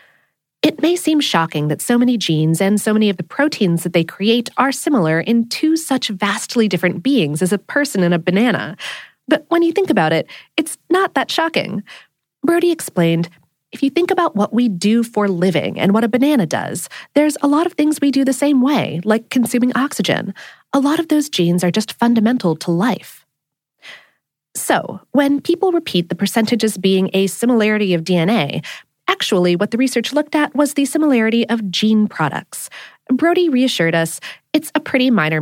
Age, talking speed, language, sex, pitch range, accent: 30-49, 185 wpm, English, female, 180-280 Hz, American